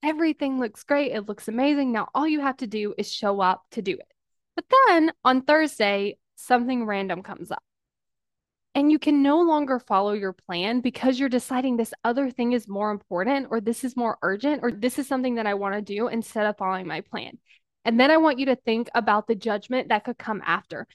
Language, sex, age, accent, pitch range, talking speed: English, female, 10-29, American, 225-290 Hz, 215 wpm